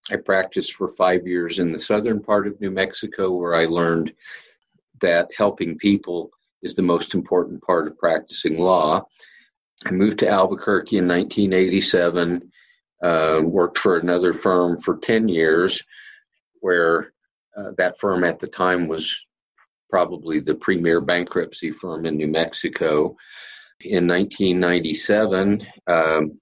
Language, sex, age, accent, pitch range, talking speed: English, male, 50-69, American, 80-95 Hz, 135 wpm